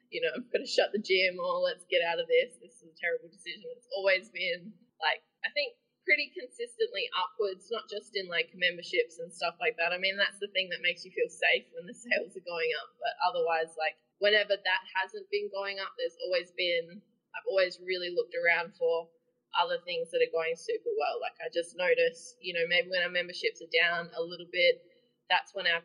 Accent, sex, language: Australian, female, English